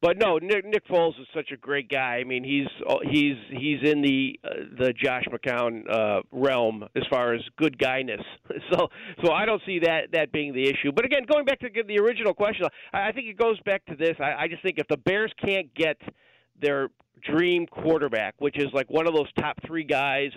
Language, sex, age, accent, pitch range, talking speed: English, male, 50-69, American, 140-180 Hz, 220 wpm